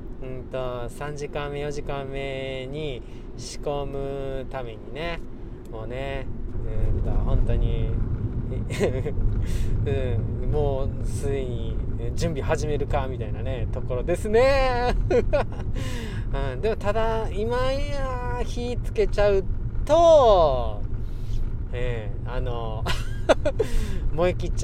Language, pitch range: Japanese, 110-125 Hz